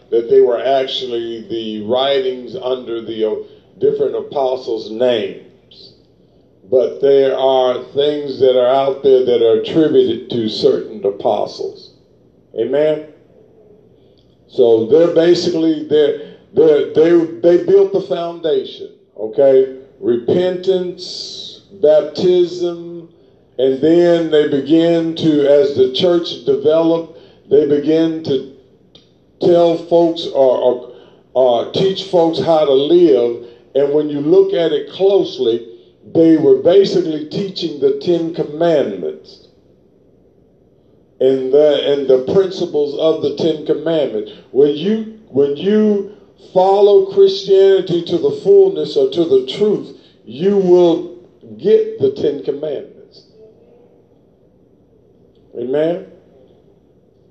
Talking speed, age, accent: 110 wpm, 50-69, American